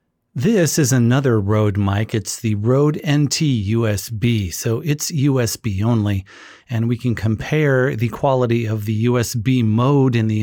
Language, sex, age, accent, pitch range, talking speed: English, male, 40-59, American, 110-130 Hz, 145 wpm